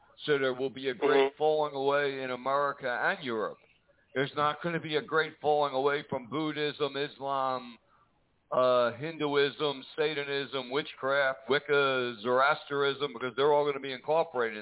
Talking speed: 150 wpm